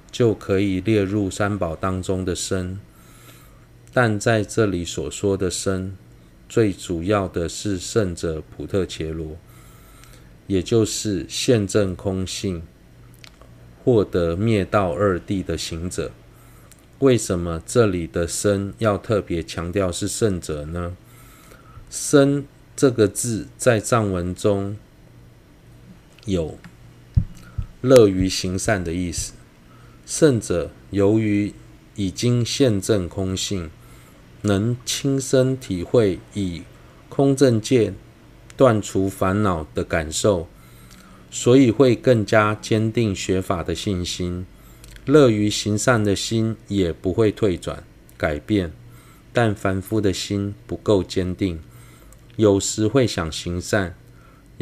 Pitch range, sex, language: 90-115 Hz, male, Chinese